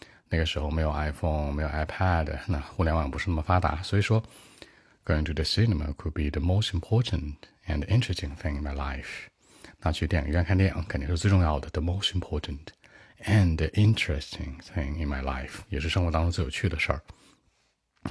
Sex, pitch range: male, 75-95 Hz